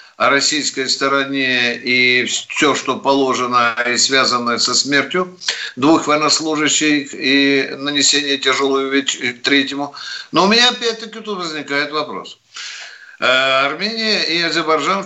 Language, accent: Russian, native